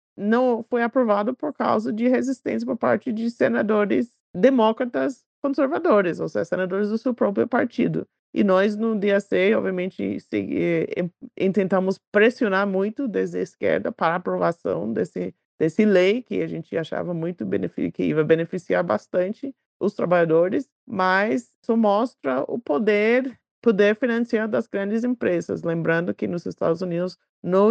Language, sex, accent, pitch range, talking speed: Portuguese, male, Brazilian, 175-225 Hz, 140 wpm